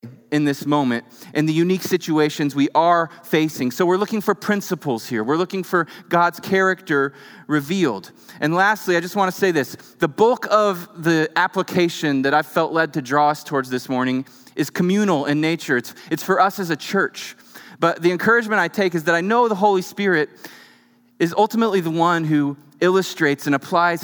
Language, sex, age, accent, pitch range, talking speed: English, male, 30-49, American, 135-180 Hz, 190 wpm